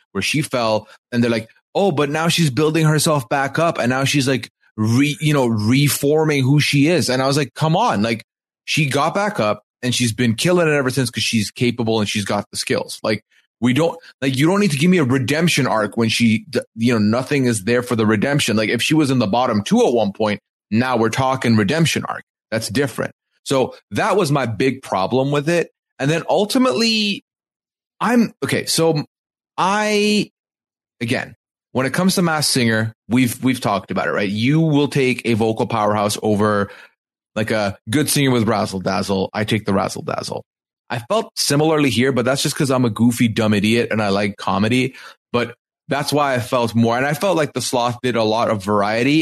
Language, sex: English, male